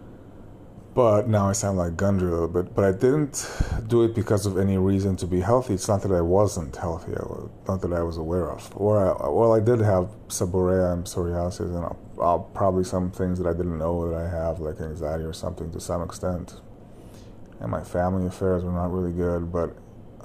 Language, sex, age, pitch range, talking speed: English, male, 20-39, 90-105 Hz, 215 wpm